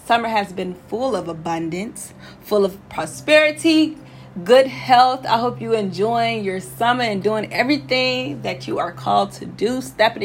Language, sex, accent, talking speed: English, female, American, 160 wpm